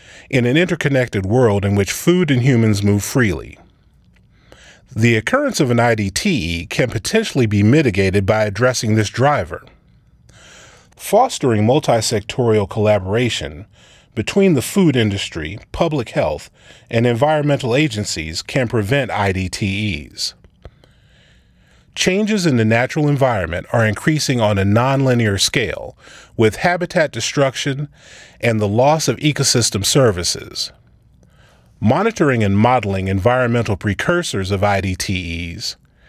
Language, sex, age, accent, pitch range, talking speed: English, male, 30-49, American, 100-140 Hz, 110 wpm